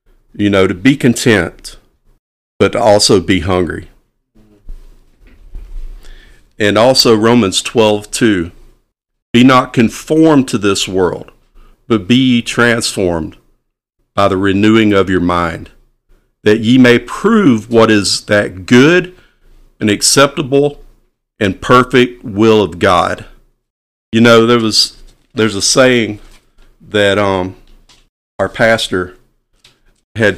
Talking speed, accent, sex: 115 wpm, American, male